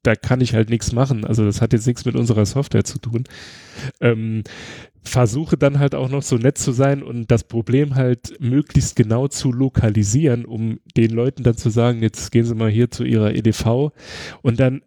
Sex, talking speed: male, 200 wpm